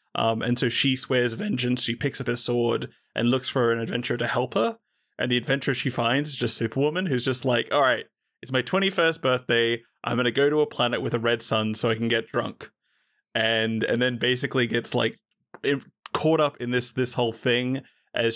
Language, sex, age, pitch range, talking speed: English, male, 20-39, 115-130 Hz, 210 wpm